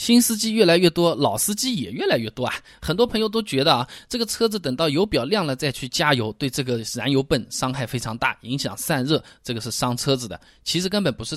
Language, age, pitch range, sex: Chinese, 20-39, 125-200 Hz, male